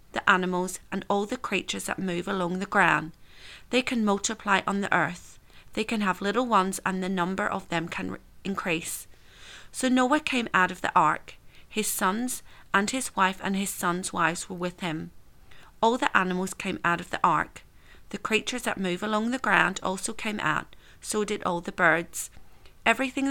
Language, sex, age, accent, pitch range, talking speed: English, female, 40-59, British, 175-220 Hz, 185 wpm